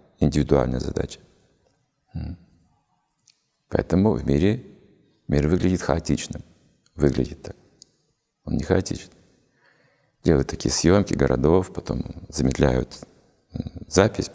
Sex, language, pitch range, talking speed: male, Russian, 75-95 Hz, 85 wpm